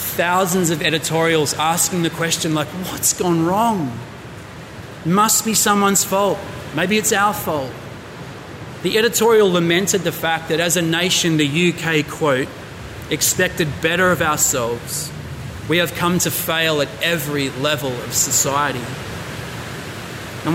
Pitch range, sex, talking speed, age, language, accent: 135-170 Hz, male, 130 wpm, 30-49, English, Australian